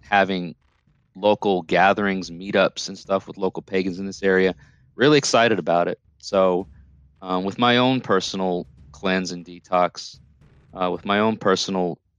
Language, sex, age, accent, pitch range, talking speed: English, male, 30-49, American, 85-95 Hz, 150 wpm